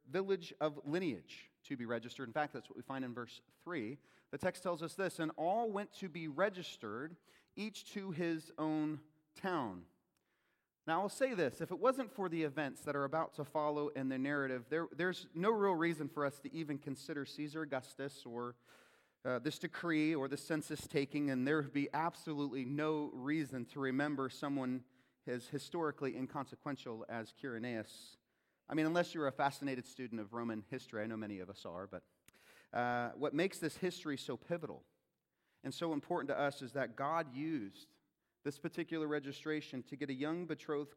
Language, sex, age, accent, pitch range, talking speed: English, male, 30-49, American, 135-165 Hz, 185 wpm